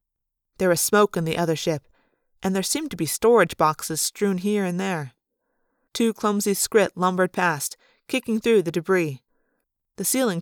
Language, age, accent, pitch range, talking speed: English, 30-49, American, 165-220 Hz, 165 wpm